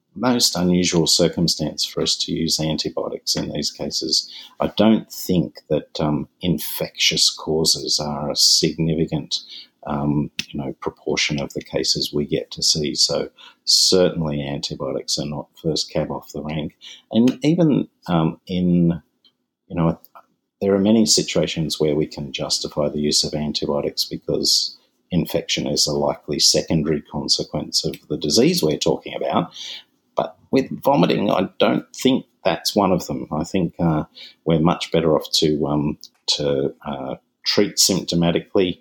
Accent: Australian